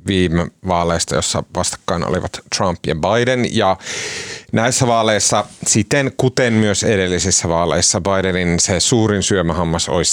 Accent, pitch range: native, 85-110 Hz